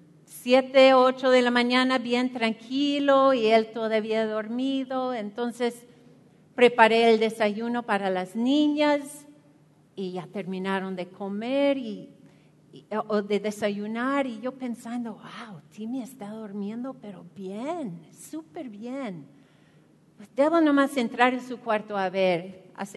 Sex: female